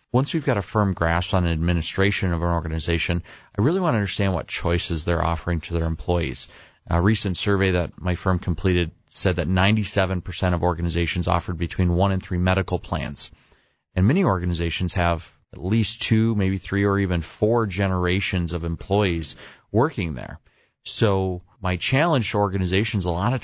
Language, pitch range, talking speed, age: English, 85-105 Hz, 175 wpm, 30-49